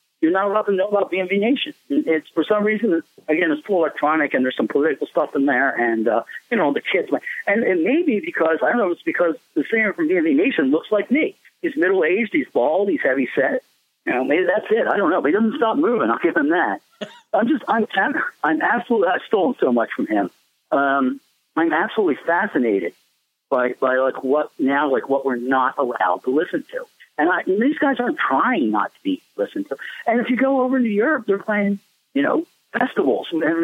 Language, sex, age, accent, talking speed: English, male, 50-69, American, 225 wpm